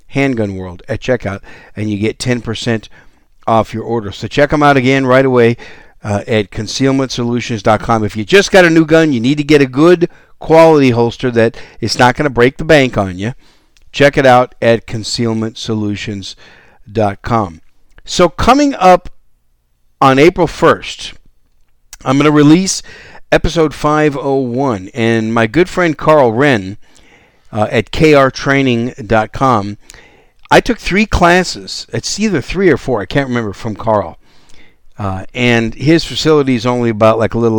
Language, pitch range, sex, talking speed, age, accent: English, 105-145 Hz, male, 155 wpm, 50-69, American